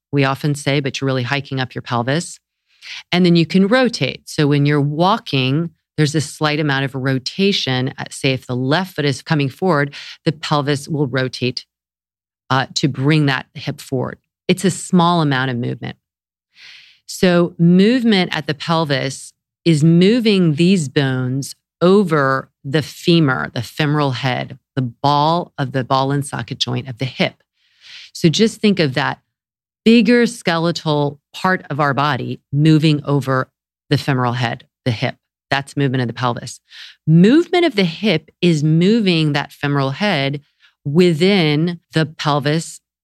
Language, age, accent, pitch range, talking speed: English, 40-59, American, 135-170 Hz, 155 wpm